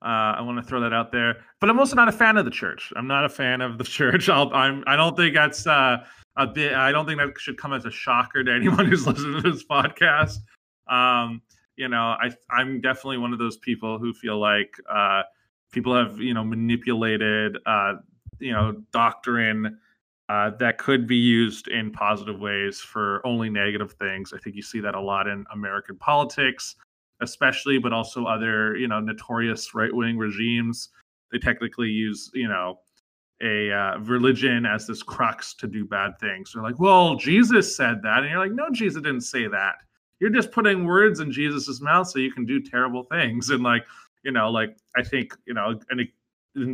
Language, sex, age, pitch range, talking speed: English, male, 30-49, 110-135 Hz, 200 wpm